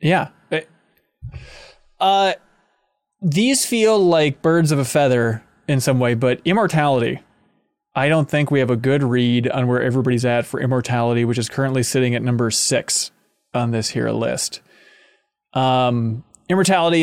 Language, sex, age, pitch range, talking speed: English, male, 20-39, 125-155 Hz, 145 wpm